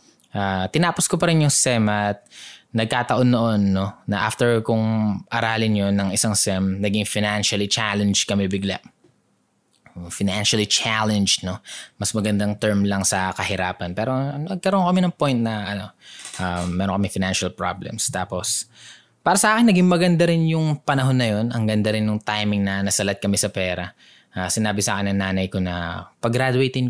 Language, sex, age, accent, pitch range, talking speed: Filipino, male, 20-39, native, 95-115 Hz, 165 wpm